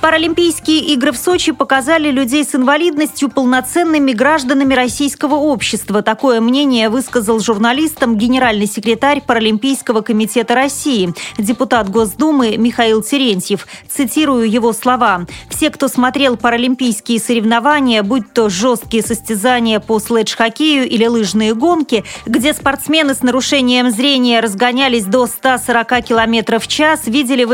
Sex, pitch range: female, 225-270 Hz